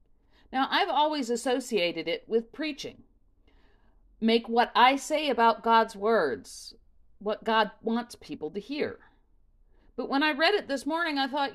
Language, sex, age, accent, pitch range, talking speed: English, female, 50-69, American, 200-275 Hz, 150 wpm